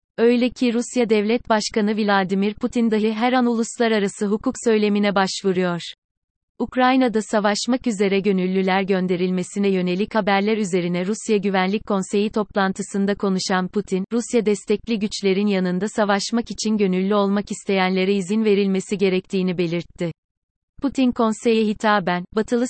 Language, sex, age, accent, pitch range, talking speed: Turkish, female, 30-49, native, 190-225 Hz, 120 wpm